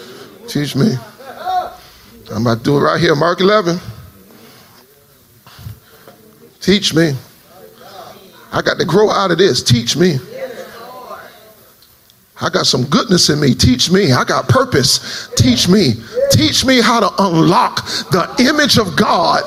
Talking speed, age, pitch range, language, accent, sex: 135 wpm, 40-59, 190-270 Hz, English, American, male